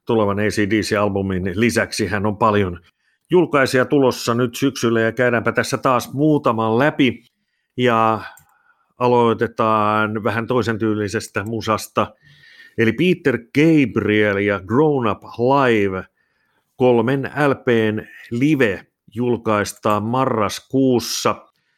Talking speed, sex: 90 wpm, male